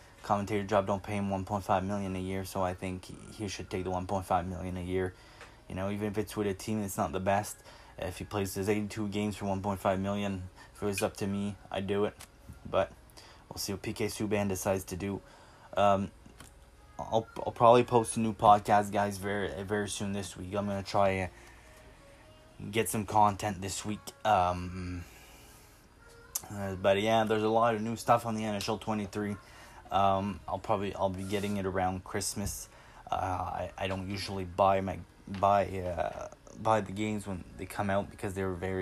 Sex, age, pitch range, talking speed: male, 20-39, 95-105 Hz, 190 wpm